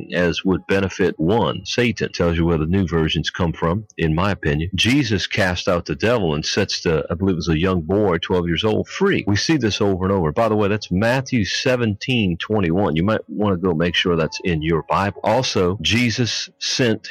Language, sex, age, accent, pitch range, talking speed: English, male, 40-59, American, 90-115 Hz, 220 wpm